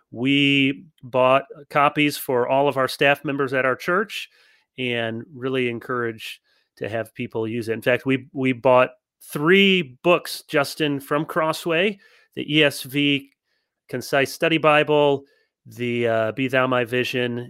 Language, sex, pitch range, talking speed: English, male, 125-165 Hz, 140 wpm